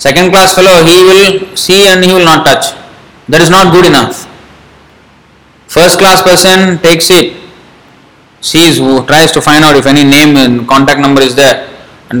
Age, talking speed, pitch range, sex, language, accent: 20-39, 175 wpm, 135-180 Hz, male, English, Indian